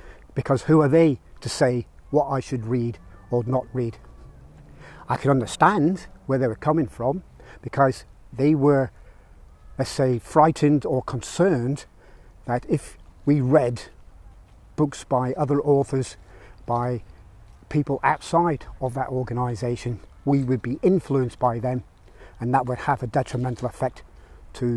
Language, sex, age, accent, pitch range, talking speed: English, male, 40-59, British, 115-145 Hz, 140 wpm